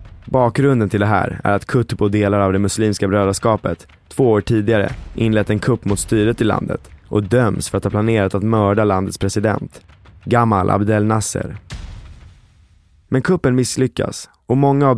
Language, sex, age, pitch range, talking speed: Swedish, male, 20-39, 100-120 Hz, 165 wpm